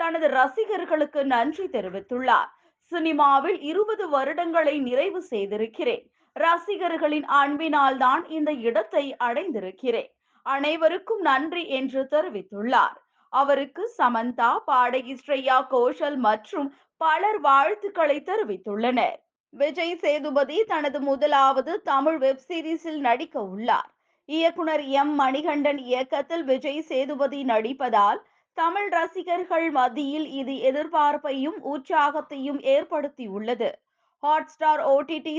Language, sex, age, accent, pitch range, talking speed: Tamil, female, 20-39, native, 265-325 Hz, 85 wpm